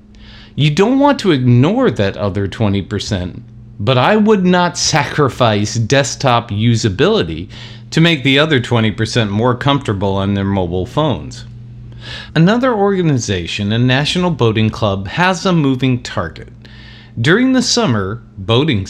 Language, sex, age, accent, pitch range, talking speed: English, male, 50-69, American, 105-145 Hz, 125 wpm